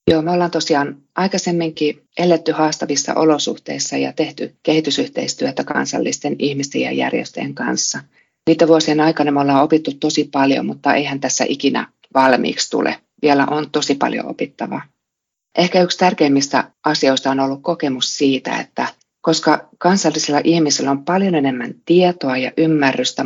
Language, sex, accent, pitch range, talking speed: Finnish, female, native, 140-165 Hz, 135 wpm